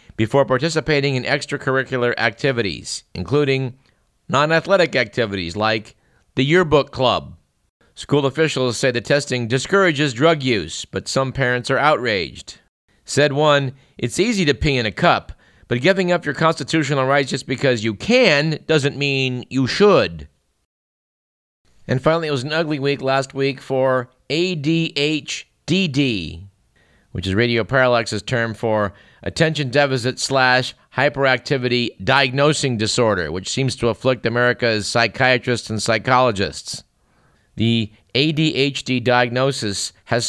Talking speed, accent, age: 125 wpm, American, 50-69